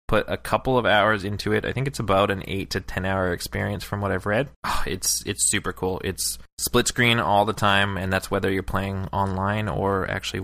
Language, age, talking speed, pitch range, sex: English, 20-39, 230 wpm, 95-105 Hz, male